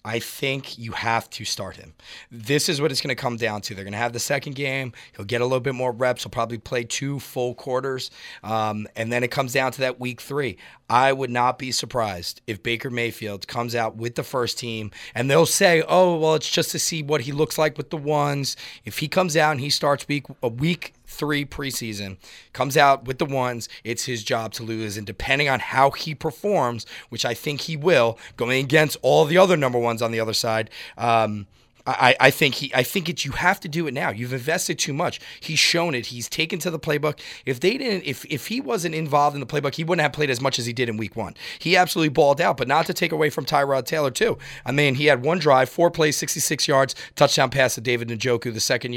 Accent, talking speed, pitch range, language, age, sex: American, 245 wpm, 120-155 Hz, English, 30-49, male